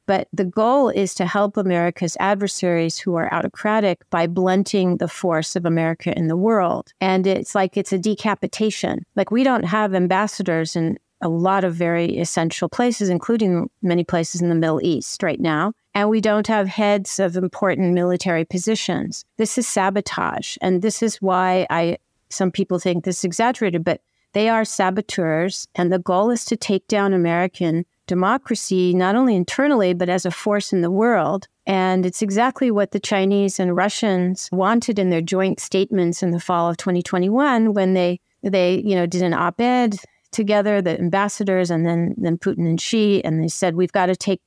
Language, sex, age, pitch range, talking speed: English, female, 50-69, 175-205 Hz, 180 wpm